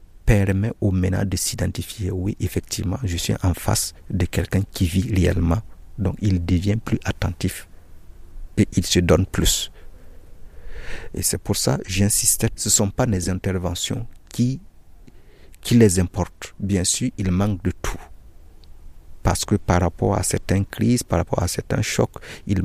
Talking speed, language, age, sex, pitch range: 160 wpm, French, 60-79, male, 85-105 Hz